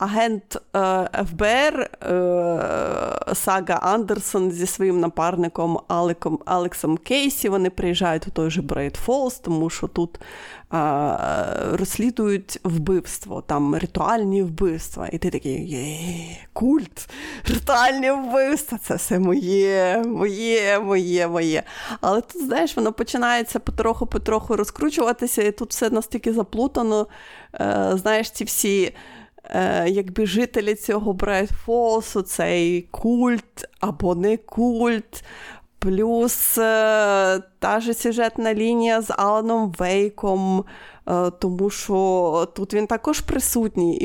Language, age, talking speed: Ukrainian, 30-49, 110 wpm